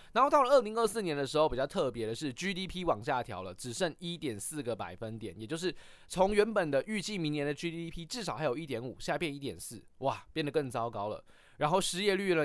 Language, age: Chinese, 20-39